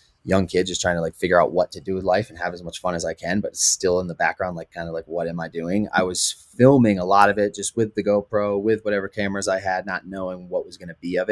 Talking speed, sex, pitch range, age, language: 310 wpm, male, 85-100 Hz, 20-39, English